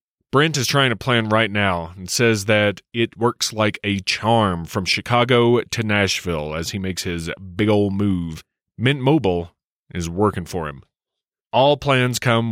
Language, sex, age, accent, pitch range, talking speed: English, male, 30-49, American, 95-125 Hz, 170 wpm